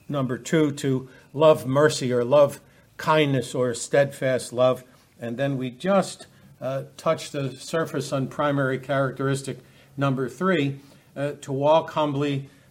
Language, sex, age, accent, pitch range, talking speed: English, male, 60-79, American, 130-150 Hz, 135 wpm